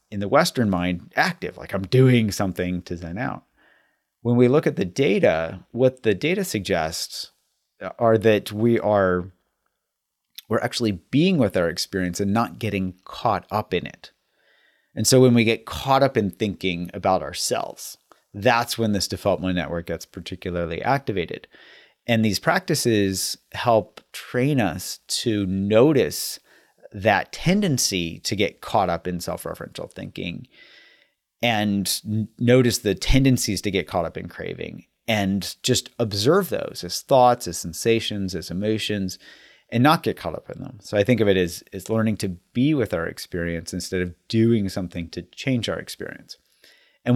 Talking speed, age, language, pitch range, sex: 160 wpm, 30-49, English, 90-115 Hz, male